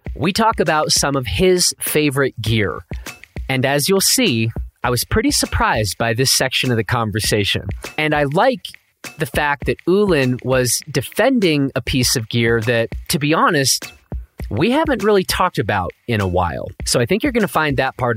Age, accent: 30-49, American